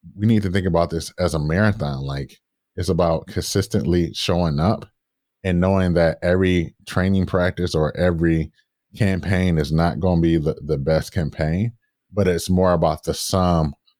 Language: English